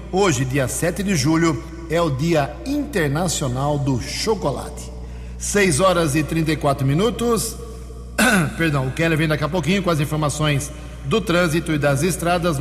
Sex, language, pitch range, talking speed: male, English, 130-165 Hz, 150 wpm